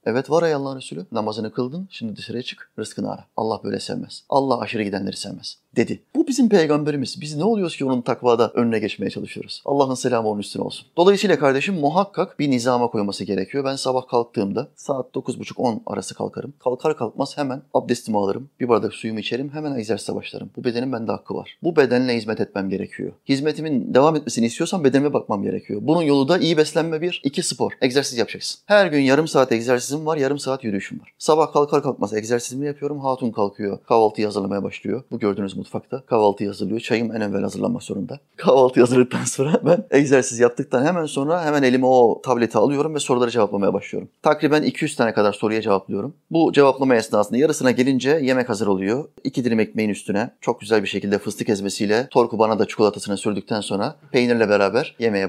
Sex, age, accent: male, 30-49, native